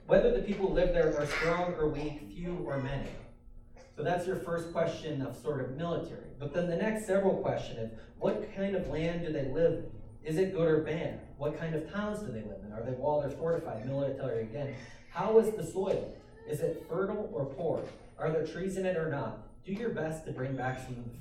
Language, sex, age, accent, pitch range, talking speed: English, male, 30-49, American, 130-165 Hz, 230 wpm